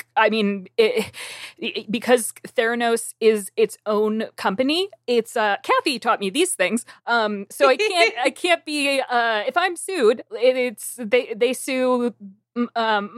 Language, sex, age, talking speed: English, female, 20-39, 140 wpm